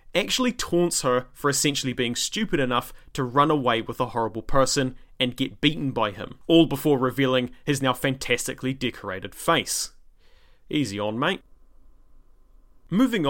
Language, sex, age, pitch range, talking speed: English, male, 30-49, 125-165 Hz, 145 wpm